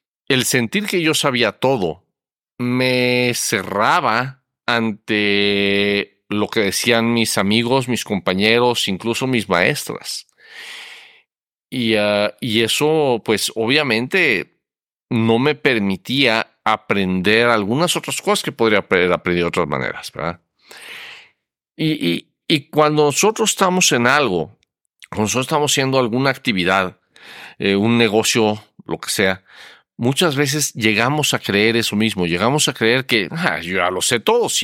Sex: male